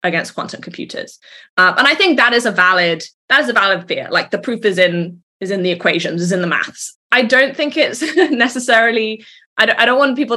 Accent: British